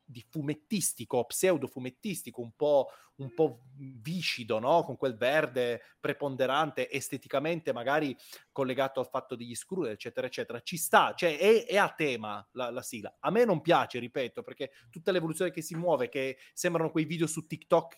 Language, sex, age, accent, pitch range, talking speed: Italian, male, 30-49, native, 135-180 Hz, 165 wpm